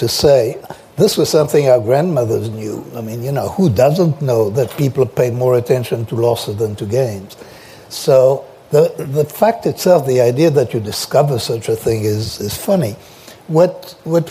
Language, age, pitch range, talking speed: English, 60-79, 115-150 Hz, 180 wpm